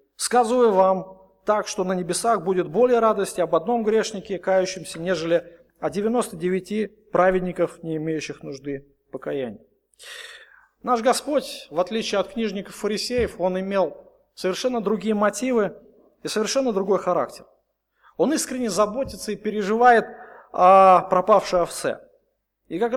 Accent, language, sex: native, Russian, male